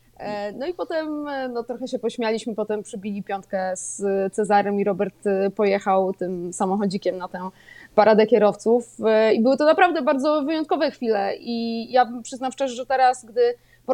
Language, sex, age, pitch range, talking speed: Polish, female, 20-39, 220-260 Hz, 155 wpm